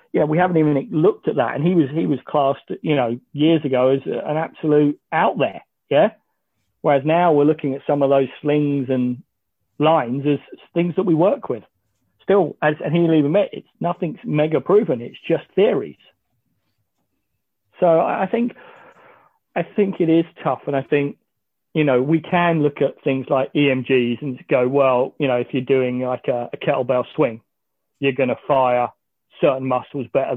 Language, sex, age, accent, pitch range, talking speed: English, male, 40-59, British, 130-155 Hz, 190 wpm